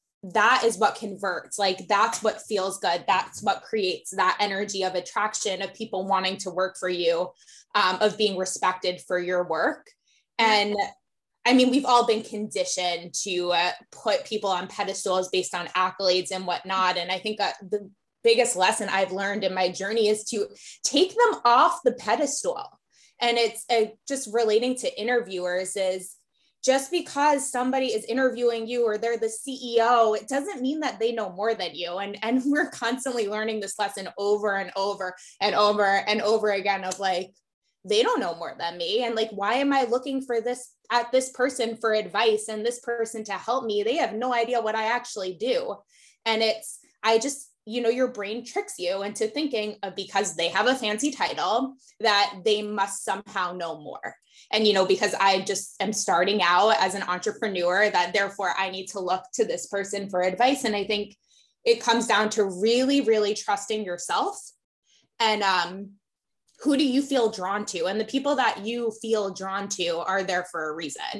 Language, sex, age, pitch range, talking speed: English, female, 20-39, 190-240 Hz, 185 wpm